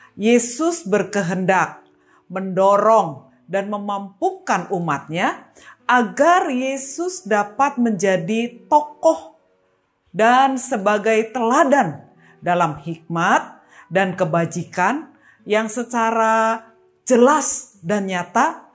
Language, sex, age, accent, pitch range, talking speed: Indonesian, female, 40-59, native, 170-255 Hz, 75 wpm